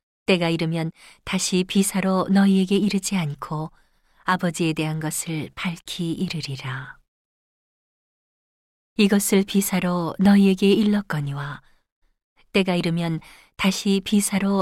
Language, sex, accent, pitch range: Korean, female, native, 160-195 Hz